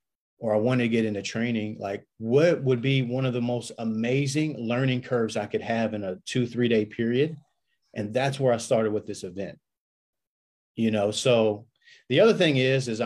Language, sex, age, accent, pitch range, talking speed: English, male, 30-49, American, 105-125 Hz, 200 wpm